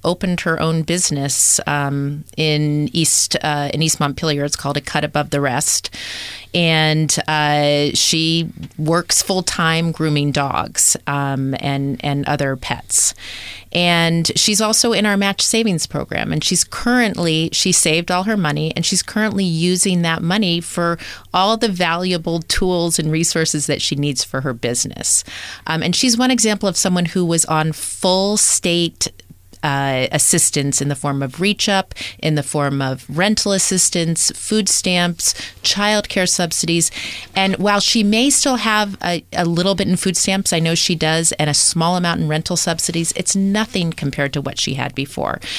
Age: 30-49